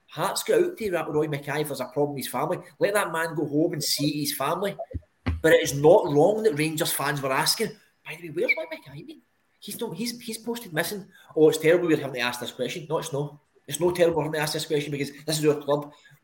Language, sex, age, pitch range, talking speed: English, male, 20-39, 130-160 Hz, 260 wpm